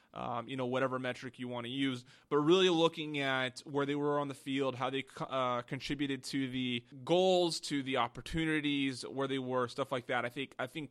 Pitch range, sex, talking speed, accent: 125-145 Hz, male, 215 wpm, American